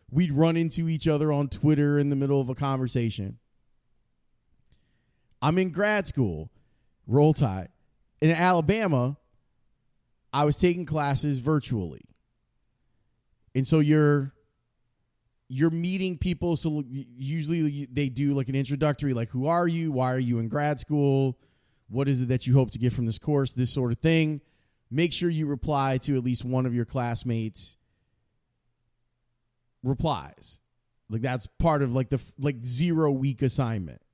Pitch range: 120-150 Hz